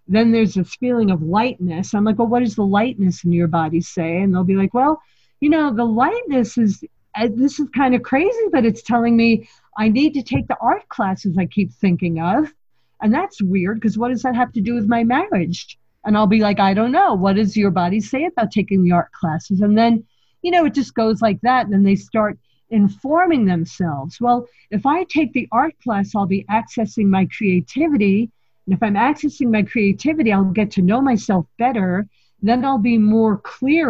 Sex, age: female, 50-69